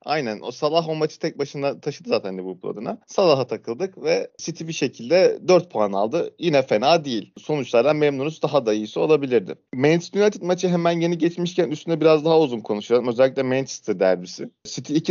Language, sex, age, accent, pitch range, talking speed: Turkish, male, 40-59, native, 135-170 Hz, 175 wpm